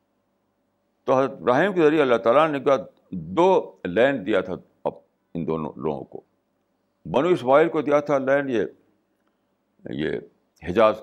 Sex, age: male, 60-79